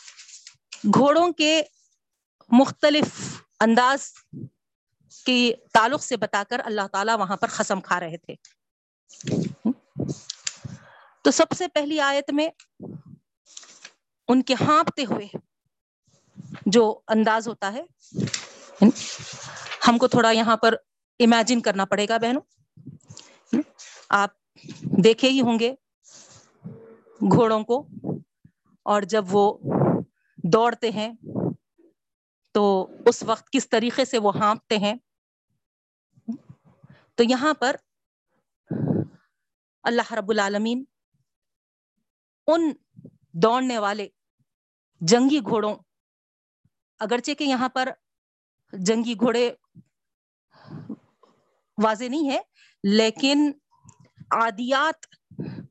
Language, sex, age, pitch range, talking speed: Urdu, female, 40-59, 210-265 Hz, 90 wpm